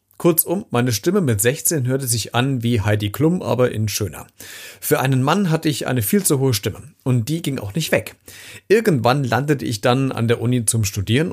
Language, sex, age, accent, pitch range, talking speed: German, male, 40-59, German, 105-140 Hz, 205 wpm